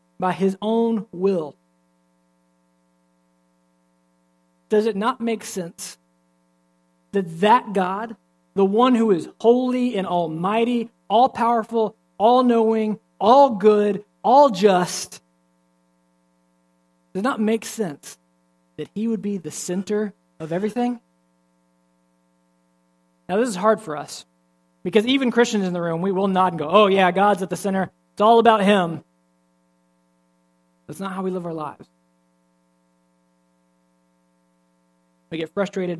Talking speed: 130 wpm